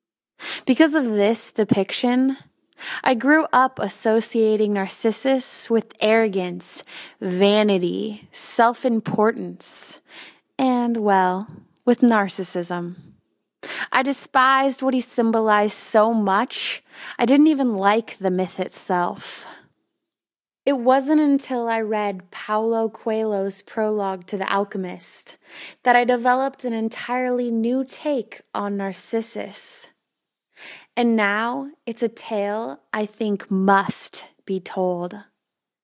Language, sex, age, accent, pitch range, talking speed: English, female, 20-39, American, 195-250 Hz, 100 wpm